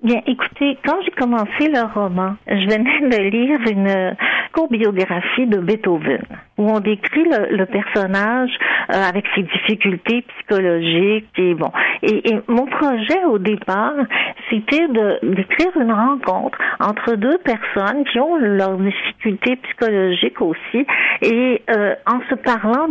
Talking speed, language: 145 wpm, French